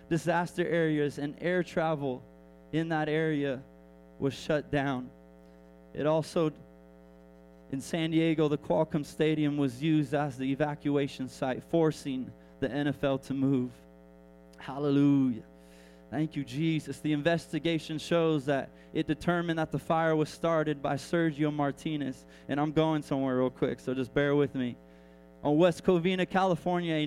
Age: 20-39